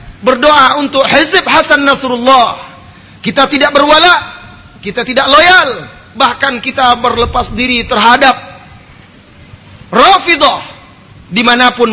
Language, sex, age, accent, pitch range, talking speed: Indonesian, male, 30-49, native, 225-295 Hz, 90 wpm